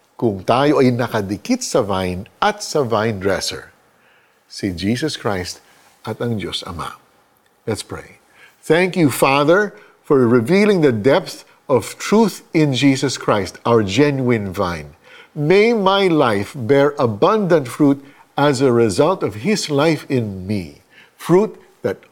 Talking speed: 135 wpm